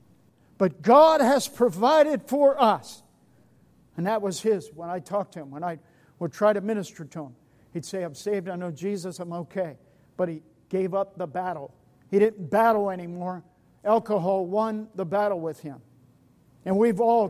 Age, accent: 50-69, American